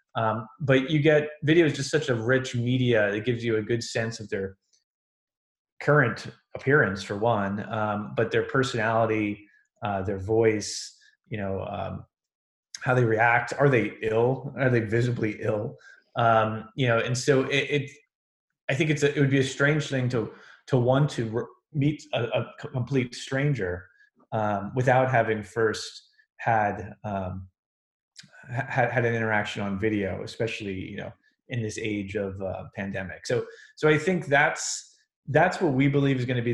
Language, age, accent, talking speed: English, 20-39, American, 170 wpm